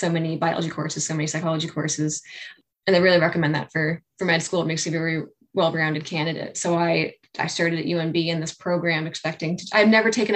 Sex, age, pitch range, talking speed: female, 10-29, 160-190 Hz, 220 wpm